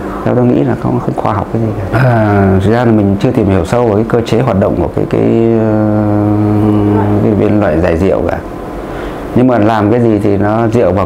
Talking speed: 235 wpm